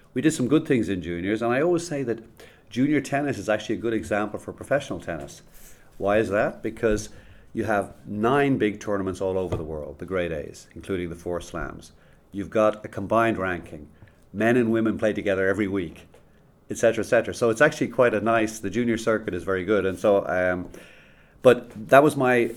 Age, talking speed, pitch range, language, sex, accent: 40-59, 200 wpm, 90-110 Hz, English, male, Irish